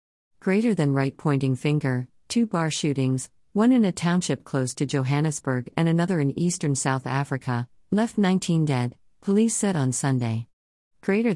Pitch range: 130-160 Hz